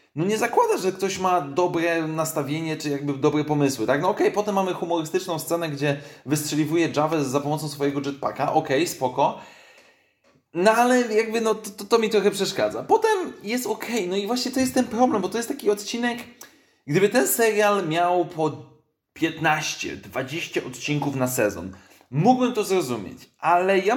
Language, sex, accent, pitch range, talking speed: Polish, male, native, 160-210 Hz, 180 wpm